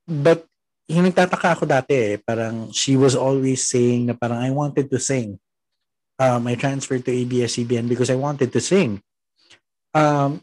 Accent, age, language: native, 20-39, Filipino